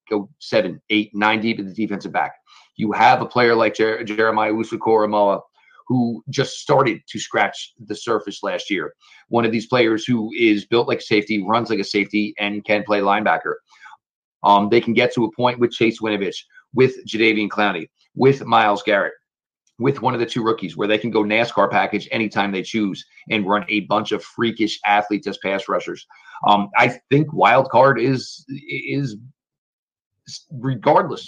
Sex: male